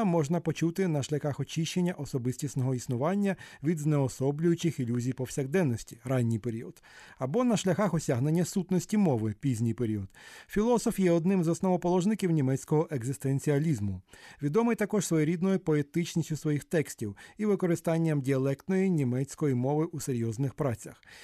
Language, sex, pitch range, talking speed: Ukrainian, male, 140-180 Hz, 120 wpm